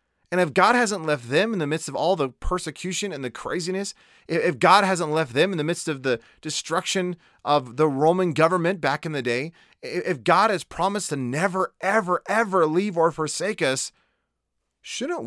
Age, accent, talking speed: 30-49, American, 190 wpm